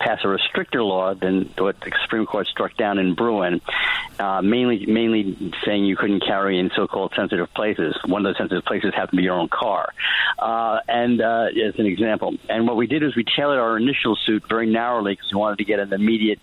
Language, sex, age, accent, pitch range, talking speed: English, male, 50-69, American, 95-115 Hz, 220 wpm